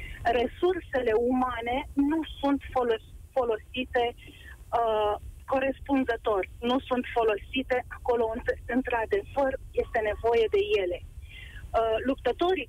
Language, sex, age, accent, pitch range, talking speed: Romanian, female, 30-49, native, 235-300 Hz, 75 wpm